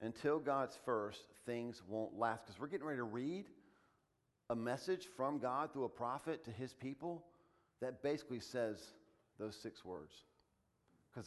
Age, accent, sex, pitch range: 40-59, American, male, 115-140 Hz